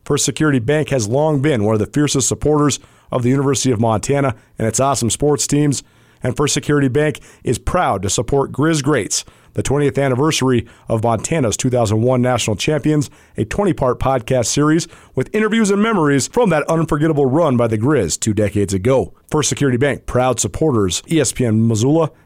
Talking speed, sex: 175 wpm, male